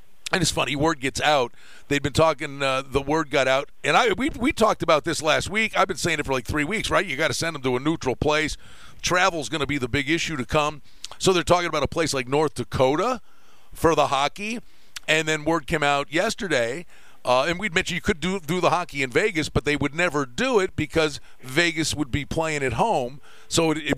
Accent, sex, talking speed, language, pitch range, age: American, male, 245 wpm, English, 145-180 Hz, 50-69